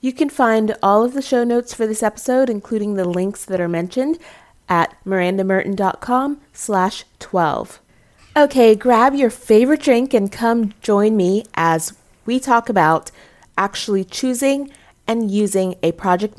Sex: female